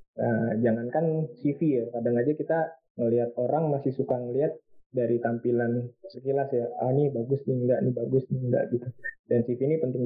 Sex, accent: male, native